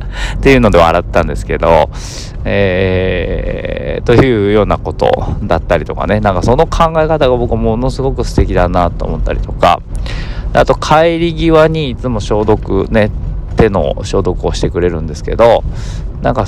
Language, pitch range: Japanese, 90-120 Hz